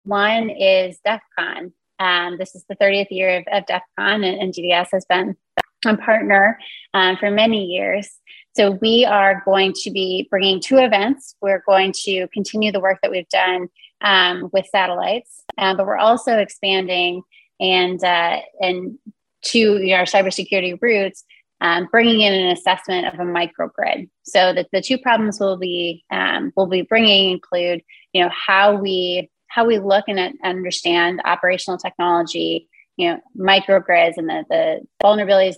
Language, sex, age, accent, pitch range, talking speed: English, female, 20-39, American, 180-205 Hz, 165 wpm